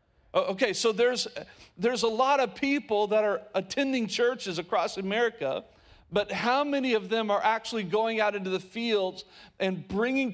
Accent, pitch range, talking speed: American, 170-230 Hz, 160 wpm